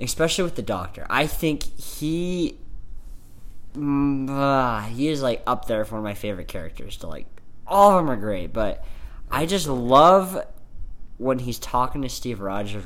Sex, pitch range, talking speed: male, 95-130 Hz, 170 wpm